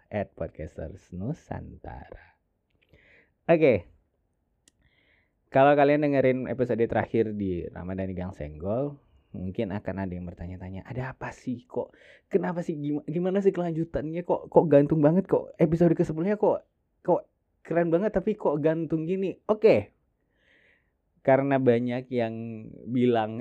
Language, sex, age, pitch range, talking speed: Indonesian, male, 20-39, 95-145 Hz, 130 wpm